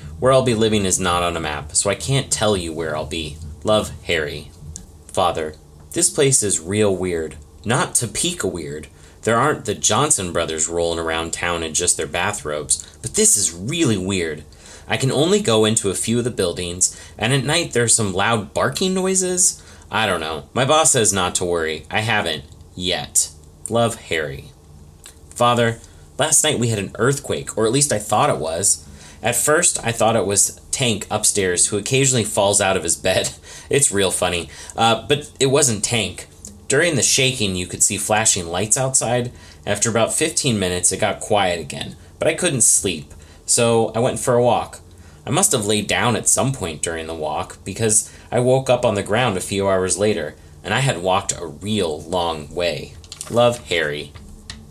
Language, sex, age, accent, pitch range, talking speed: English, male, 30-49, American, 80-115 Hz, 190 wpm